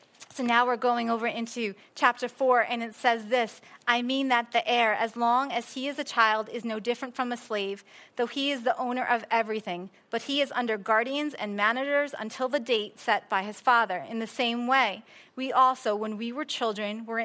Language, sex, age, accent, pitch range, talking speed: English, female, 30-49, American, 225-265 Hz, 215 wpm